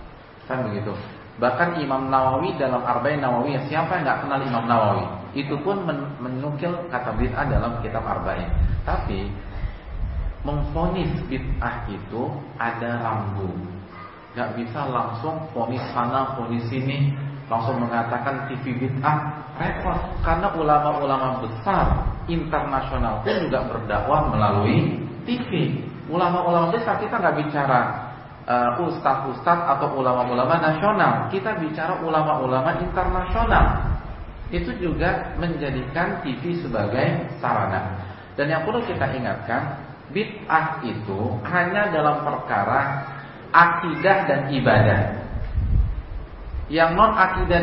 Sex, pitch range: male, 115-165 Hz